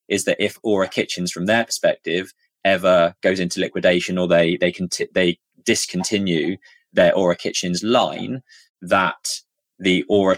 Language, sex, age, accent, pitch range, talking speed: English, male, 20-39, British, 90-110 Hz, 150 wpm